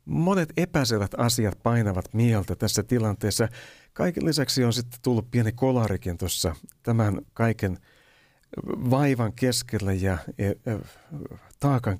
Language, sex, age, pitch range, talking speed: Finnish, male, 60-79, 95-130 Hz, 105 wpm